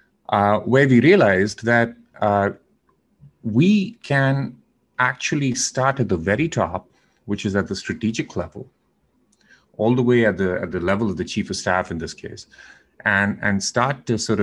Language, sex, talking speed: English, male, 165 wpm